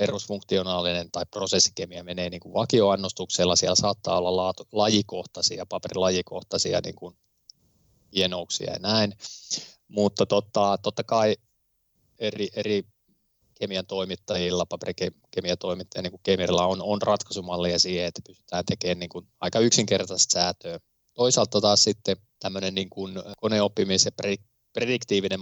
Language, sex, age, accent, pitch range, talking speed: Finnish, male, 20-39, native, 90-105 Hz, 110 wpm